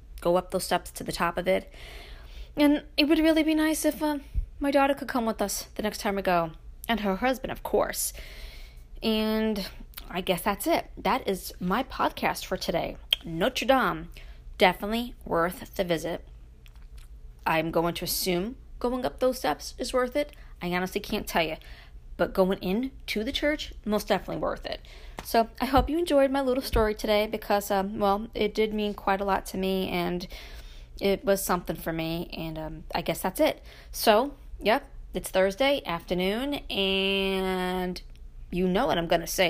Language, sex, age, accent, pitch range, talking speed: English, female, 20-39, American, 170-220 Hz, 180 wpm